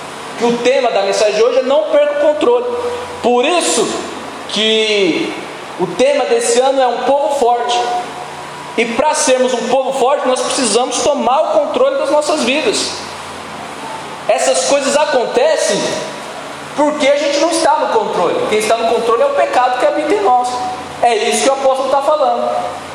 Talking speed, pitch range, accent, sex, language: 170 wpm, 240-295 Hz, Brazilian, male, Portuguese